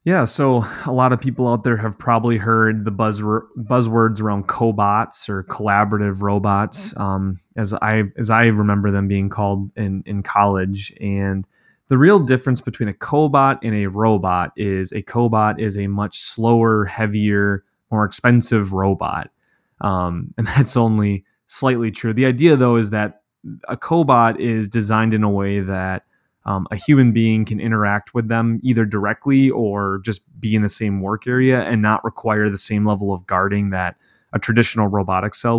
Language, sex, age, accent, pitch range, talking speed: English, male, 20-39, American, 100-115 Hz, 175 wpm